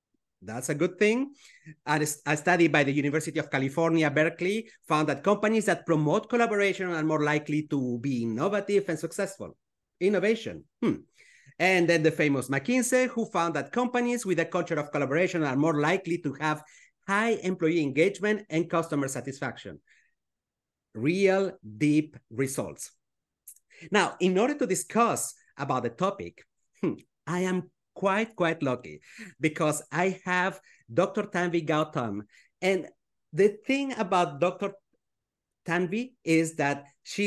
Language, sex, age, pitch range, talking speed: English, male, 30-49, 145-200 Hz, 135 wpm